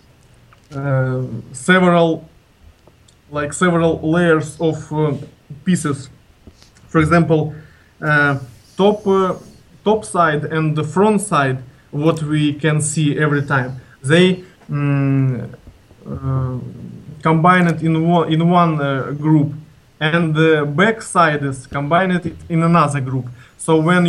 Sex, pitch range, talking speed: male, 140-165 Hz, 120 wpm